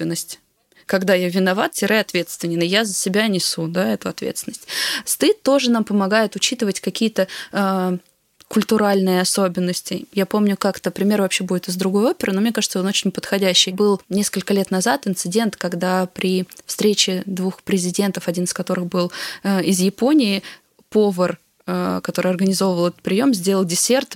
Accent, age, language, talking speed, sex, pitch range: native, 20-39, Russian, 150 wpm, female, 185-220 Hz